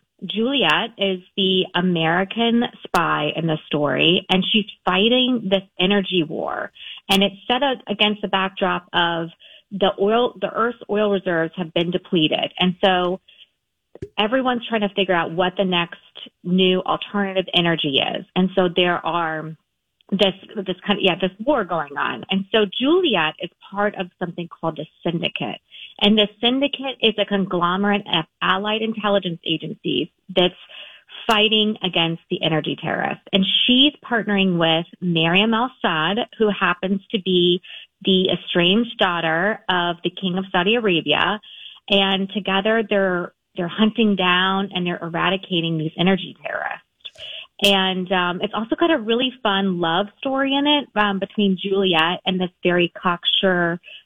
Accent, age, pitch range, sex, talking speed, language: American, 30-49, 175-210 Hz, female, 150 wpm, English